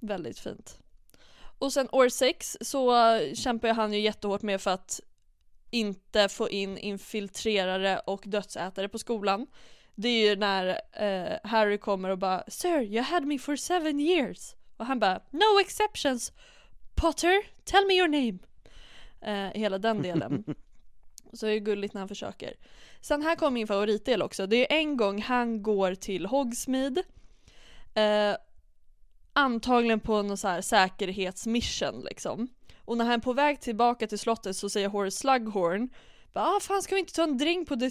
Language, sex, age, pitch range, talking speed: Swedish, female, 20-39, 205-265 Hz, 175 wpm